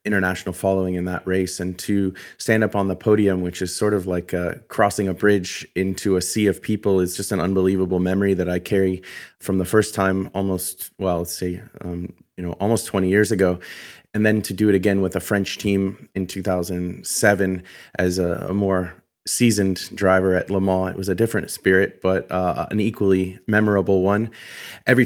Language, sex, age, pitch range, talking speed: English, male, 30-49, 95-100 Hz, 195 wpm